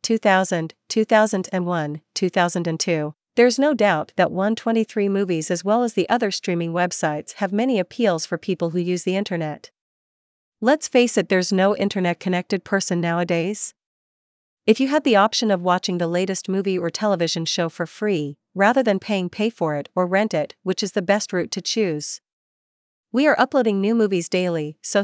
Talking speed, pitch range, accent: 170 wpm, 170-210 Hz, American